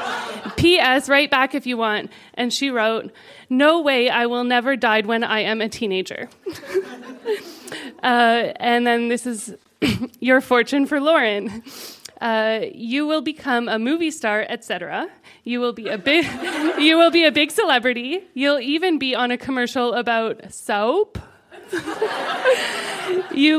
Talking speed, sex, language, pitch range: 145 wpm, female, English, 235-300 Hz